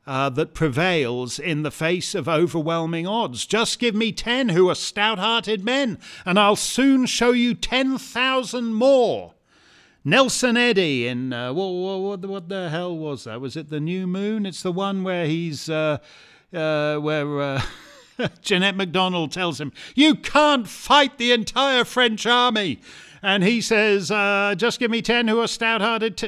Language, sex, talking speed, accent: English, male, 165 wpm, British